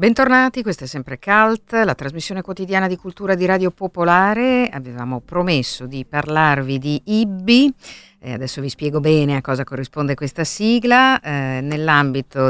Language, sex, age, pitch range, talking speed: Italian, female, 50-69, 135-185 Hz, 145 wpm